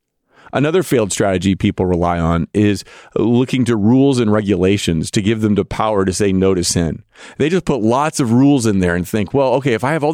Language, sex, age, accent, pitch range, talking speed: English, male, 40-59, American, 105-150 Hz, 225 wpm